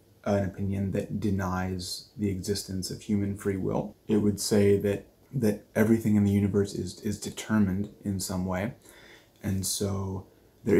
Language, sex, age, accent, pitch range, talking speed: English, male, 20-39, American, 95-105 Hz, 155 wpm